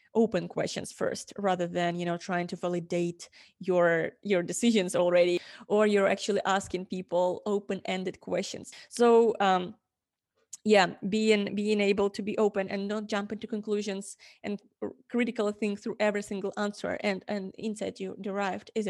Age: 20-39